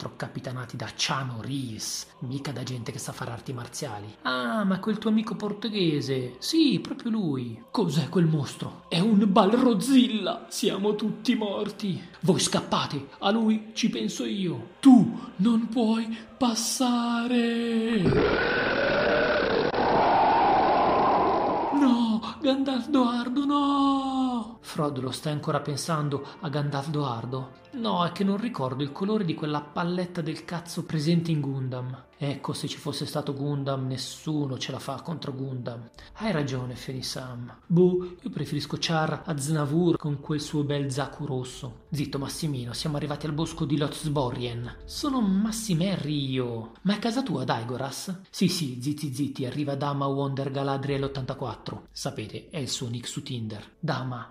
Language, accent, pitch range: Italian, native, 135-215 Hz